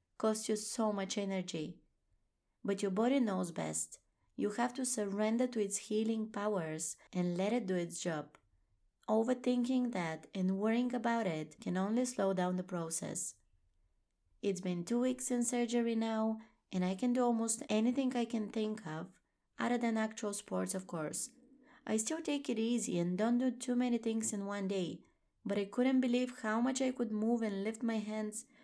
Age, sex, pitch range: 20-39, female, 180-235 Hz